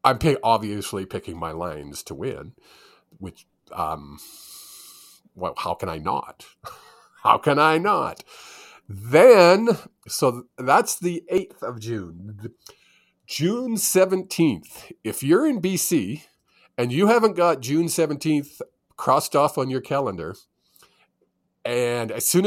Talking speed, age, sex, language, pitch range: 120 wpm, 50-69, male, English, 115-165 Hz